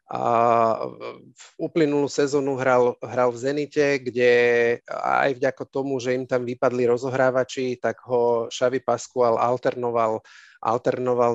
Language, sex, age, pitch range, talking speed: Slovak, male, 30-49, 120-130 Hz, 120 wpm